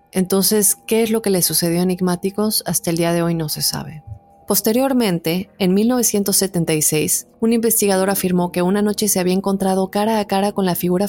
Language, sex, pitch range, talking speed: Spanish, female, 175-205 Hz, 190 wpm